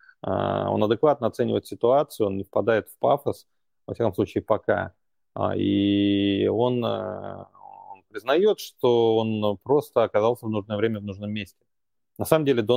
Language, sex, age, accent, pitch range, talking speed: Russian, male, 30-49, native, 105-125 Hz, 145 wpm